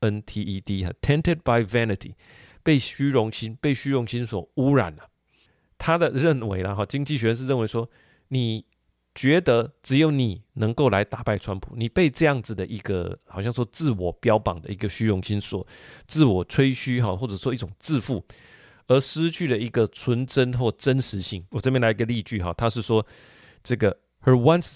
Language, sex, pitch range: Chinese, male, 105-130 Hz